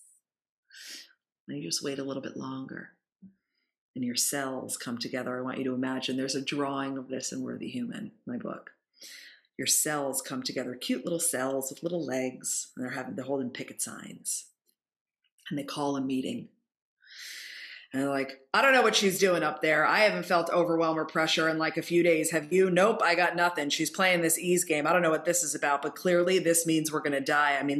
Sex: female